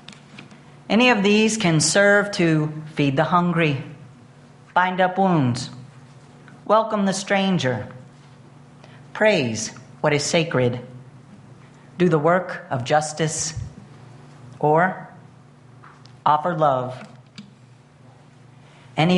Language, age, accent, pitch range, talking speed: English, 40-59, American, 130-170 Hz, 90 wpm